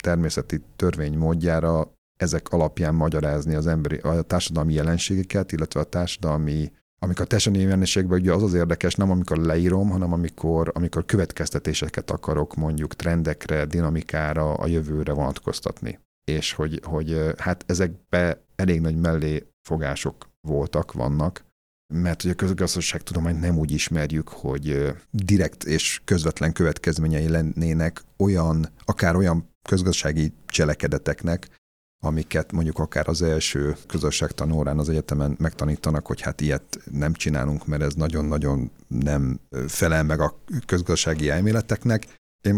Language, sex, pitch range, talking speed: Hungarian, male, 75-90 Hz, 125 wpm